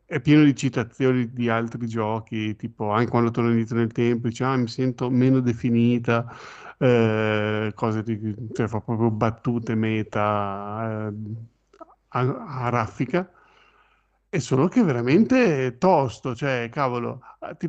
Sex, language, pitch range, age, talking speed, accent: male, Italian, 115-135 Hz, 50-69, 135 wpm, native